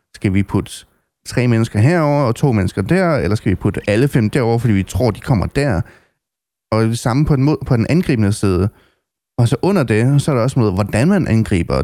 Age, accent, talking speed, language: 20-39, native, 230 wpm, Danish